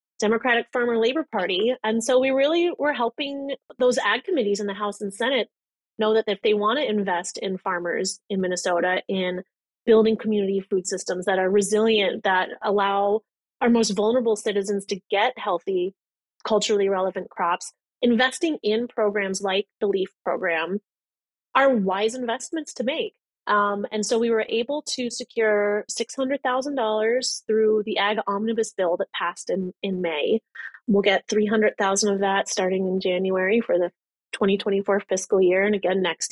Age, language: 30-49, English